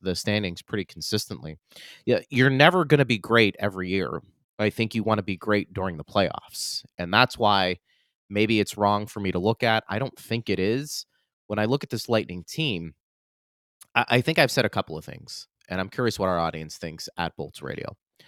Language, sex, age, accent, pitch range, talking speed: English, male, 30-49, American, 90-110 Hz, 210 wpm